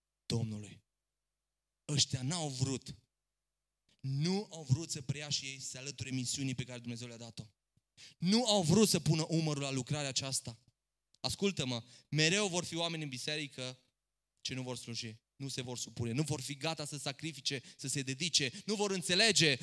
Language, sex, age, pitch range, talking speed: Romanian, male, 20-39, 125-155 Hz, 165 wpm